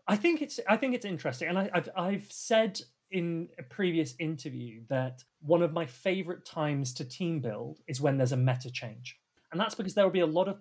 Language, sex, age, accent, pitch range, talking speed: English, male, 30-49, British, 130-185 Hz, 225 wpm